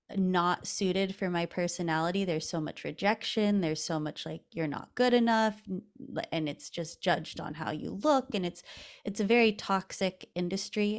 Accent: American